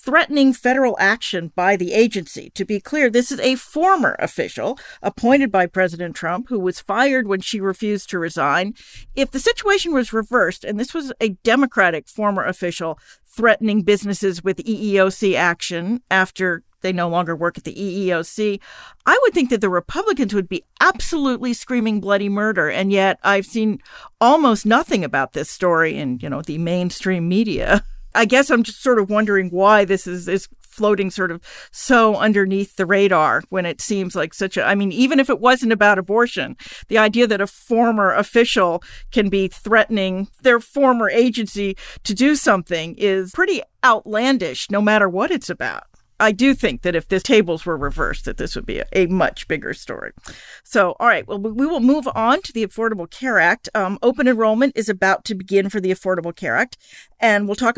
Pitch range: 190-245 Hz